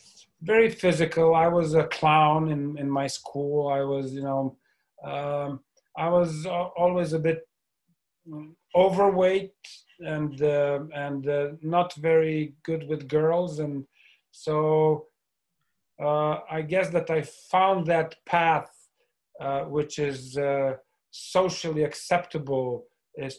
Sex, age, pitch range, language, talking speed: male, 40-59, 140-175 Hz, English, 125 wpm